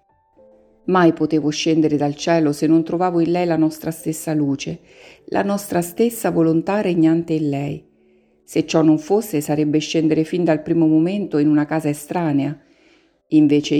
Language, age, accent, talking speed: Italian, 50-69, native, 155 wpm